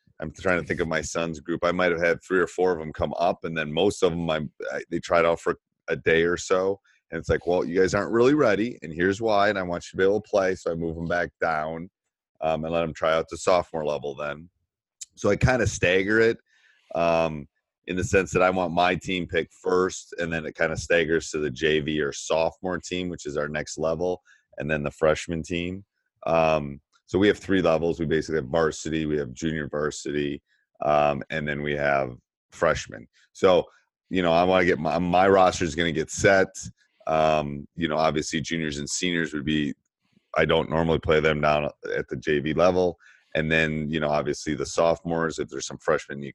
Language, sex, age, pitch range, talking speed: English, male, 30-49, 80-90 Hz, 225 wpm